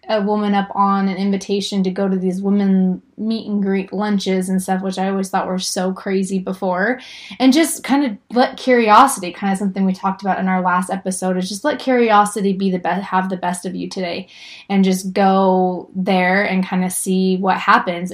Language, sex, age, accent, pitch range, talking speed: English, female, 20-39, American, 185-205 Hz, 210 wpm